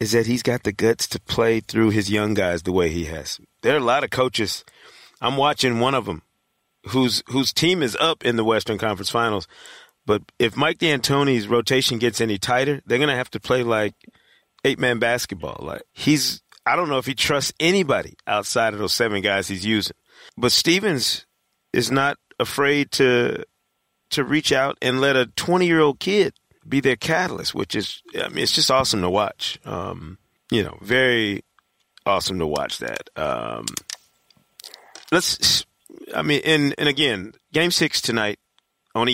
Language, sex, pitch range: English, male, 110-135 Hz